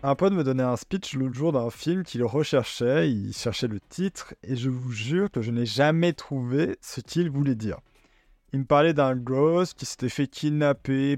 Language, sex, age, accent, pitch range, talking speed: French, male, 20-39, French, 120-150 Hz, 205 wpm